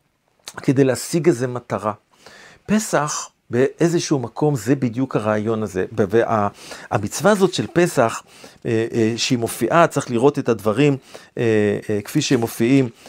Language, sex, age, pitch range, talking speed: Hebrew, male, 50-69, 110-160 Hz, 135 wpm